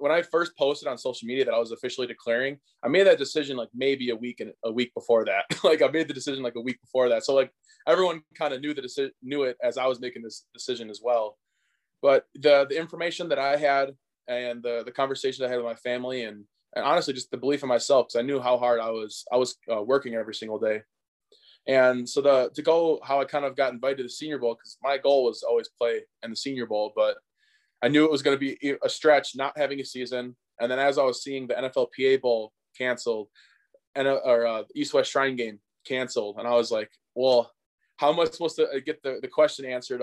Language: English